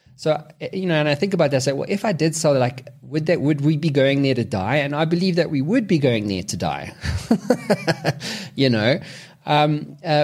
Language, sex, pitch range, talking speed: English, male, 115-150 Hz, 235 wpm